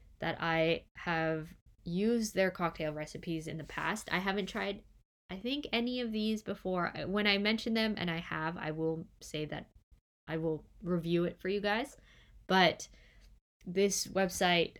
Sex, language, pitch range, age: female, English, 160-195 Hz, 20-39